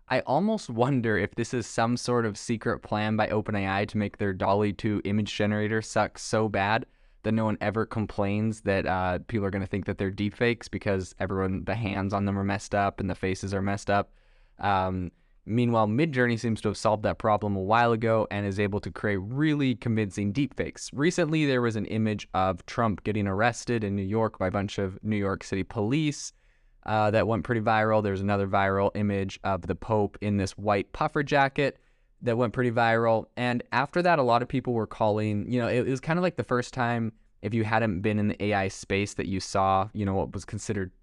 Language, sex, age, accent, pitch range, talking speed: English, male, 20-39, American, 100-115 Hz, 220 wpm